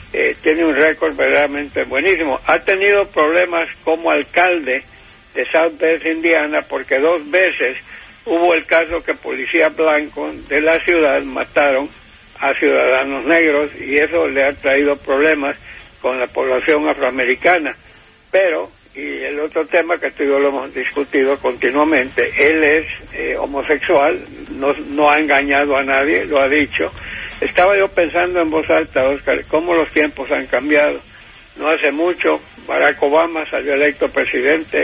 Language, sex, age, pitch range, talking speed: English, male, 60-79, 135-165 Hz, 150 wpm